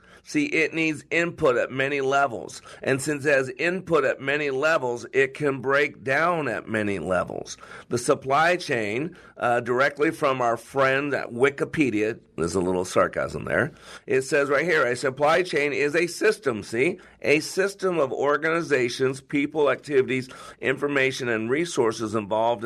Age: 50-69